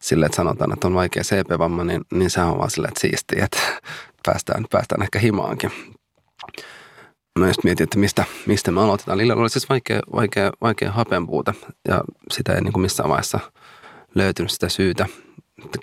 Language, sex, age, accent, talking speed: Finnish, male, 30-49, native, 165 wpm